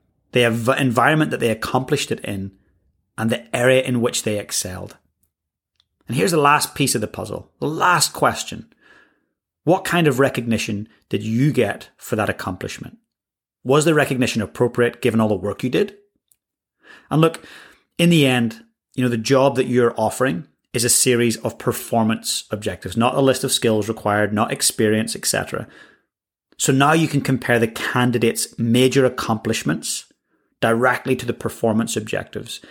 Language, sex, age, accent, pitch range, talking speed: English, male, 30-49, British, 110-135 Hz, 160 wpm